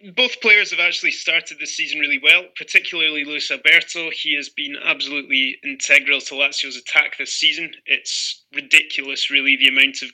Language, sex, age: English, male, 20-39